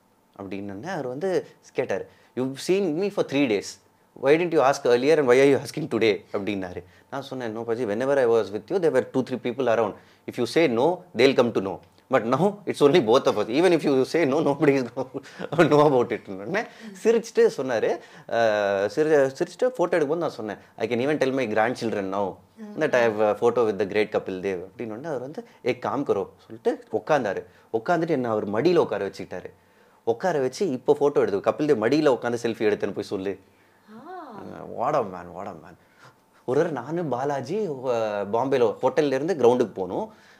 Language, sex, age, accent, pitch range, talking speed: Tamil, male, 30-49, native, 105-165 Hz, 185 wpm